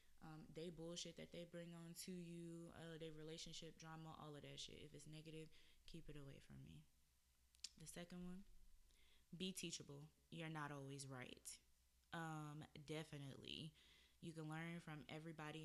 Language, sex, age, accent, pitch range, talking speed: English, female, 20-39, American, 140-170 Hz, 155 wpm